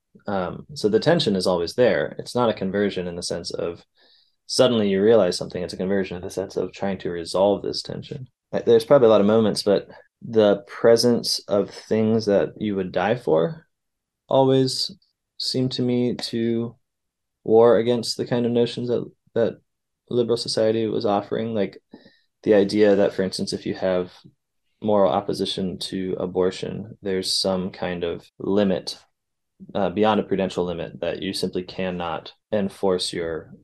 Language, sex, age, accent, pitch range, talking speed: English, male, 20-39, American, 95-120 Hz, 165 wpm